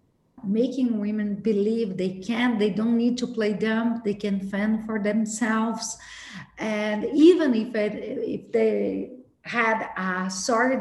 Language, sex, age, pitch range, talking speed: English, female, 40-59, 210-245 Hz, 140 wpm